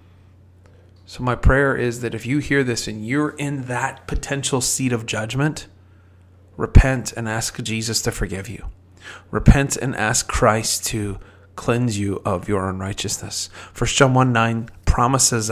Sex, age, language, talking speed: male, 30-49, English, 145 wpm